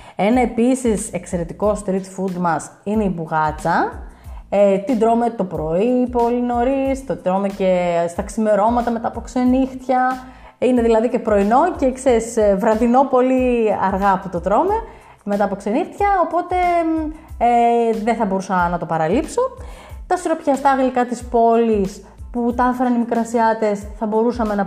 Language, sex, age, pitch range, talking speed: Greek, female, 30-49, 190-255 Hz, 145 wpm